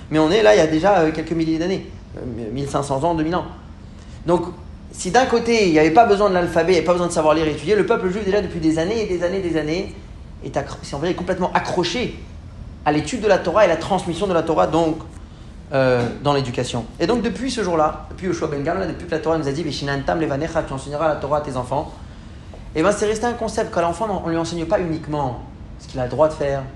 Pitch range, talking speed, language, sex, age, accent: 135-175 Hz, 260 wpm, French, male, 30-49, French